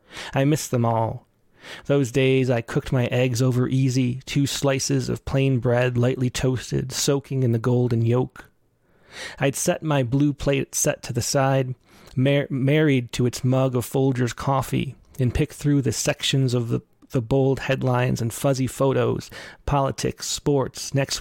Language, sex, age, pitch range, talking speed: English, male, 30-49, 125-150 Hz, 160 wpm